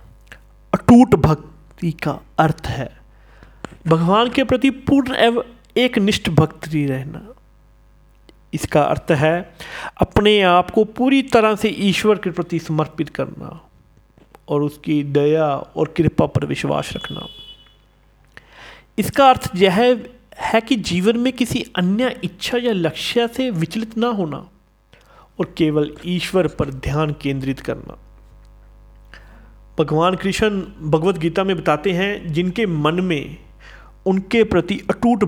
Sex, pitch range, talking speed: male, 150-210 Hz, 120 wpm